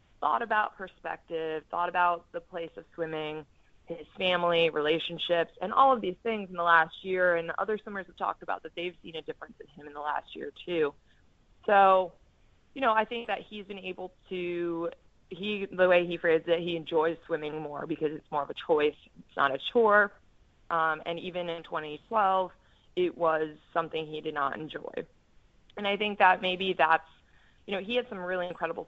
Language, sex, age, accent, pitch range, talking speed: English, female, 20-39, American, 165-205 Hz, 195 wpm